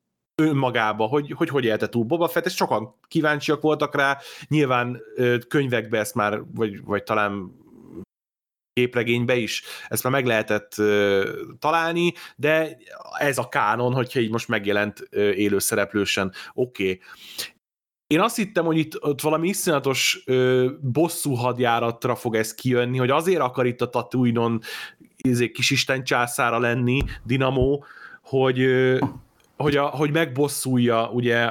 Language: Hungarian